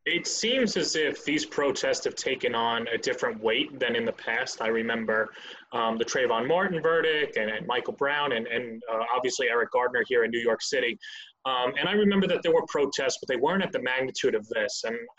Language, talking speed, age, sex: English, 215 wpm, 20-39, male